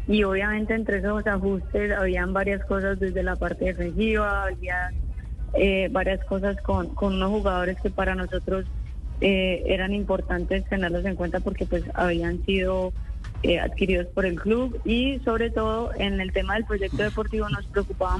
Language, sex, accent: Spanish, female, Colombian